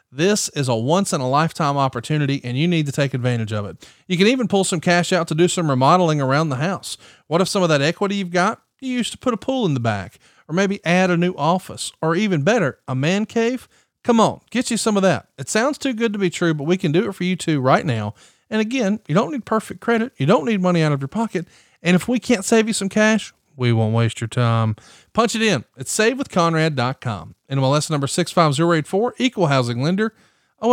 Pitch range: 135-205 Hz